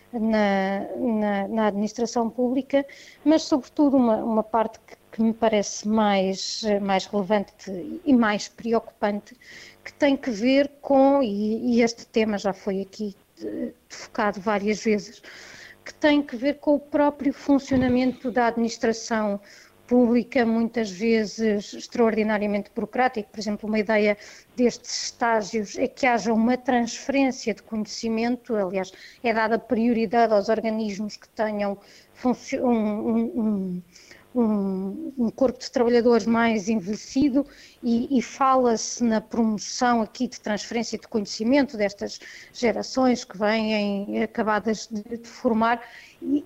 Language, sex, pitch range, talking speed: Portuguese, female, 215-250 Hz, 130 wpm